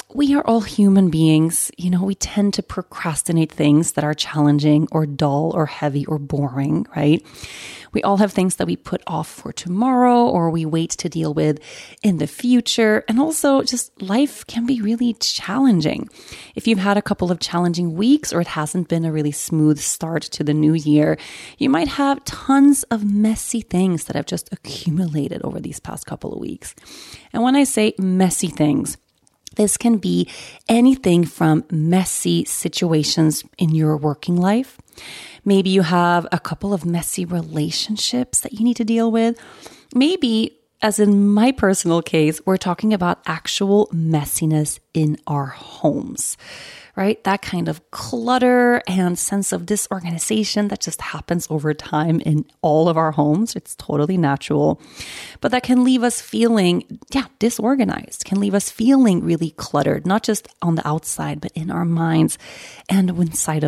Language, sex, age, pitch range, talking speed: English, female, 30-49, 155-225 Hz, 165 wpm